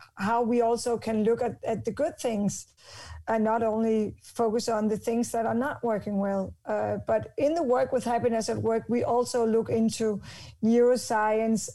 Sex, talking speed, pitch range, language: female, 185 wpm, 220-250 Hz, English